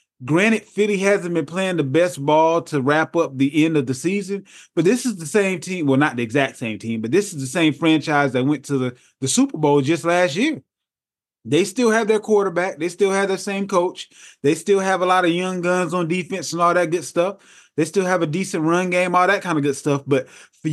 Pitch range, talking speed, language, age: 145-200 Hz, 245 wpm, English, 20-39